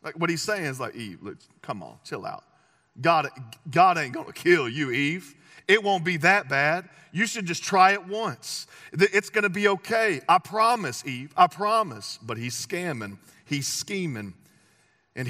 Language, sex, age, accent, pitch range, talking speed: English, male, 40-59, American, 145-195 Hz, 175 wpm